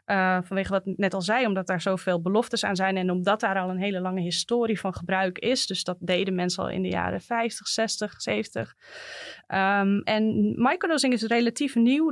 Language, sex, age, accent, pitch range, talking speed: Dutch, female, 20-39, Dutch, 190-240 Hz, 200 wpm